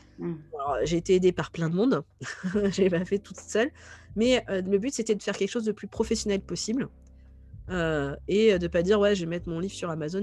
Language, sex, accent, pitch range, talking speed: French, female, French, 165-215 Hz, 235 wpm